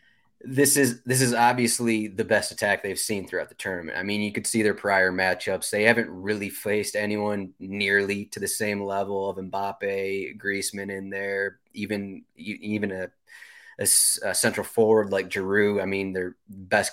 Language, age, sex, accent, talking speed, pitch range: English, 20-39, male, American, 175 wpm, 100-115 Hz